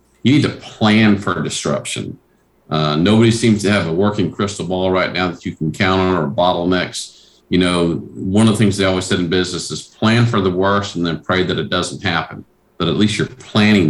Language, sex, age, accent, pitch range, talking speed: English, male, 50-69, American, 90-105 Hz, 225 wpm